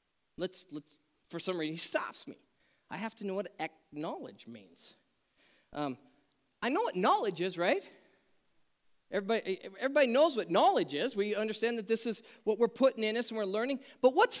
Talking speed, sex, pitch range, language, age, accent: 180 wpm, male, 195-275 Hz, English, 40-59, American